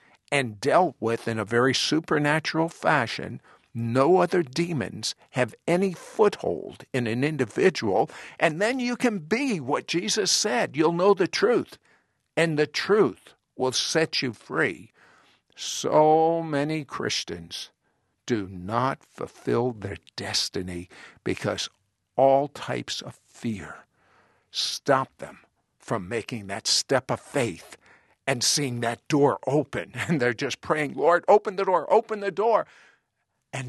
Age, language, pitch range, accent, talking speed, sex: 60-79, English, 120-170 Hz, American, 130 wpm, male